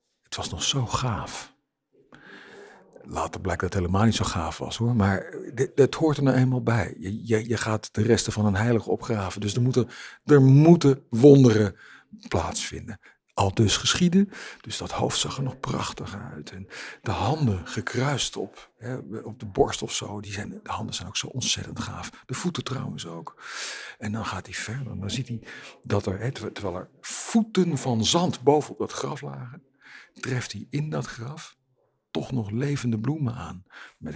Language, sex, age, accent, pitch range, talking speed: Dutch, male, 50-69, Dutch, 100-135 Hz, 190 wpm